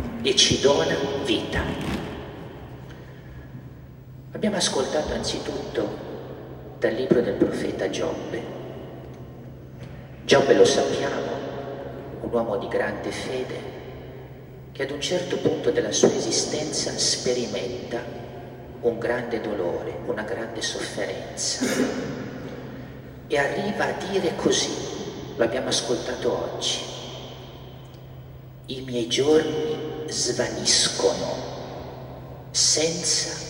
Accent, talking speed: native, 90 wpm